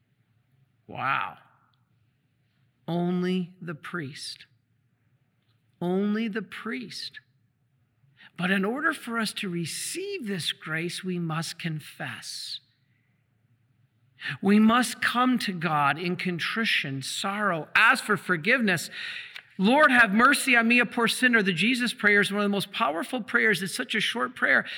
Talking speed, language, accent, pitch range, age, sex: 130 wpm, English, American, 155-230 Hz, 50-69, male